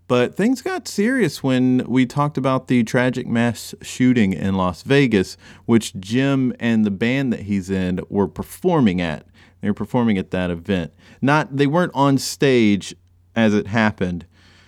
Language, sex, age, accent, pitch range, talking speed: English, male, 30-49, American, 90-125 Hz, 165 wpm